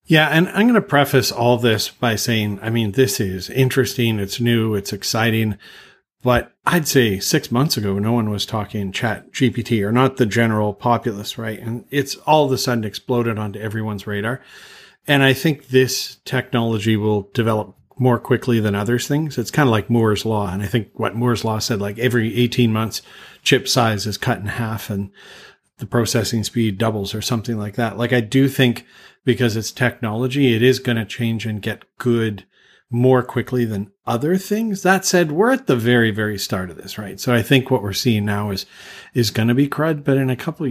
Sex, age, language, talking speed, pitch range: male, 40-59, English, 205 wpm, 105-130 Hz